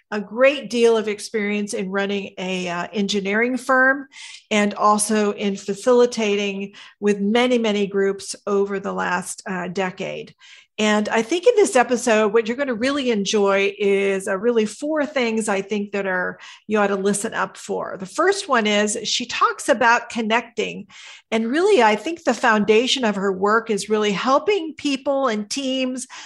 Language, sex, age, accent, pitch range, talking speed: English, female, 50-69, American, 205-245 Hz, 165 wpm